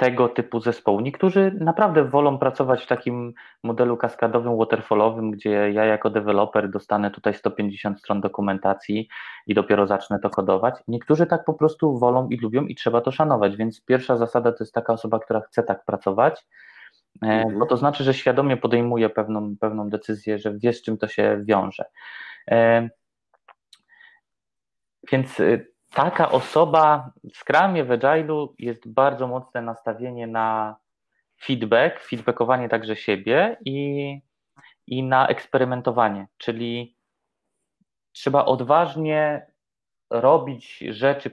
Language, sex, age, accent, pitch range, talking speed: Polish, male, 20-39, native, 110-135 Hz, 130 wpm